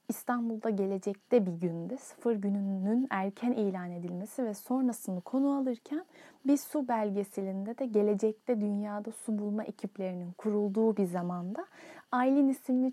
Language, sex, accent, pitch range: Turkish, female, native, 205-265 Hz